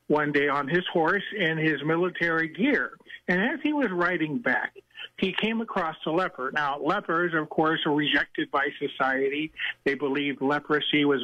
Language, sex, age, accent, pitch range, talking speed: English, male, 50-69, American, 150-180 Hz, 170 wpm